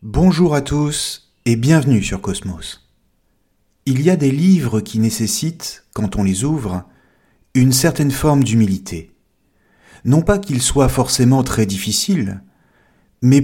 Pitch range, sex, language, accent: 105-150 Hz, male, French, French